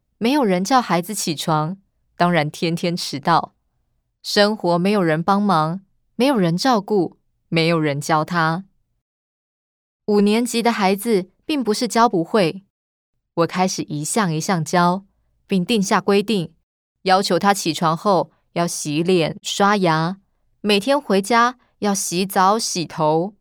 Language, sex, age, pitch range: Chinese, female, 20-39, 165-205 Hz